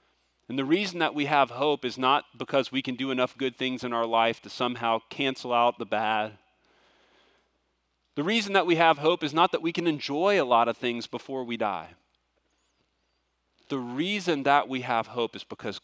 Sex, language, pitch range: male, English, 105-130 Hz